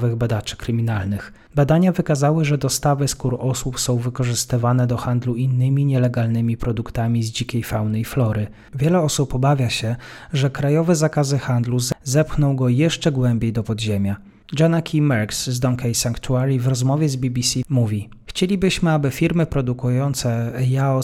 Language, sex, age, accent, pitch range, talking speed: Polish, male, 30-49, native, 115-145 Hz, 145 wpm